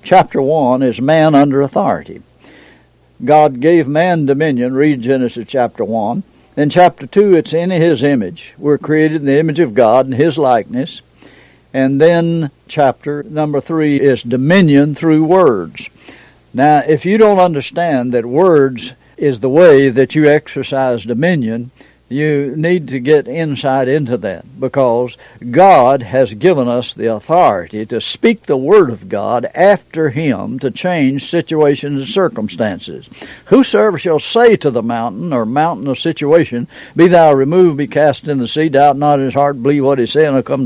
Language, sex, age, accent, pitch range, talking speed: English, male, 60-79, American, 130-160 Hz, 160 wpm